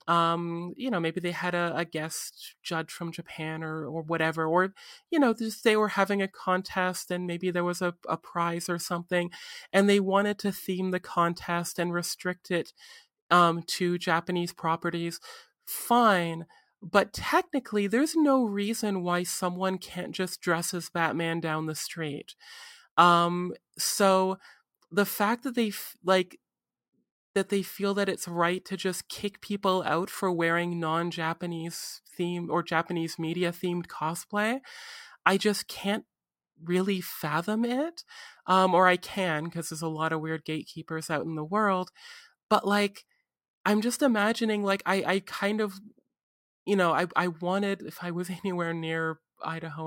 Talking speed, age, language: 160 wpm, 30-49, English